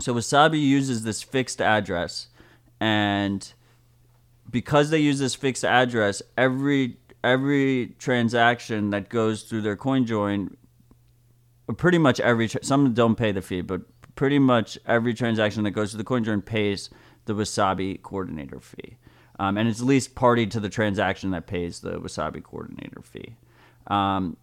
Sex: male